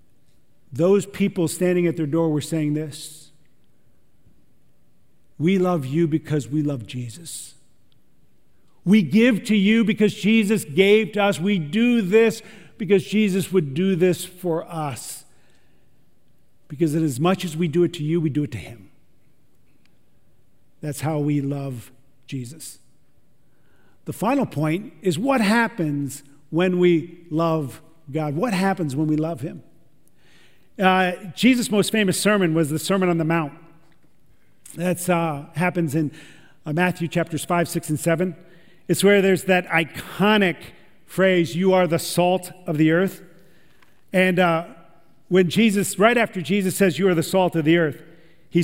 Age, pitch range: 50-69, 155-195 Hz